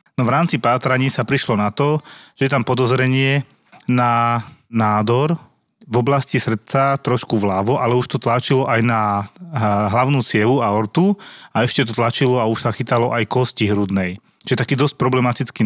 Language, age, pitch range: Slovak, 30-49, 115-135 Hz